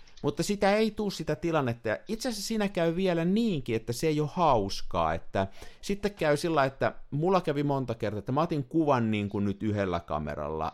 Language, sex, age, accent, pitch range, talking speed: Finnish, male, 50-69, native, 105-160 Hz, 200 wpm